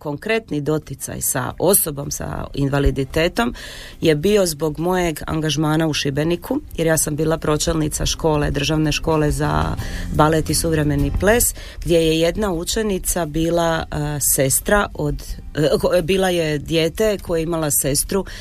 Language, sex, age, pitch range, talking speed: Croatian, female, 30-49, 140-170 Hz, 135 wpm